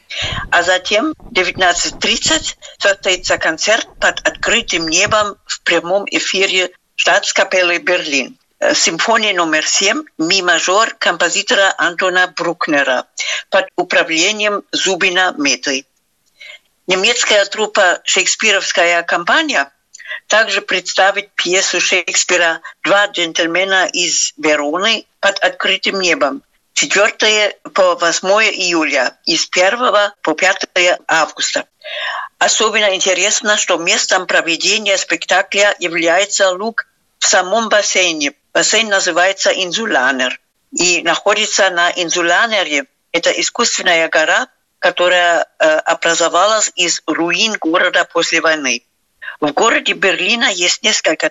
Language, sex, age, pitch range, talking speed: Russian, female, 50-69, 175-215 Hz, 100 wpm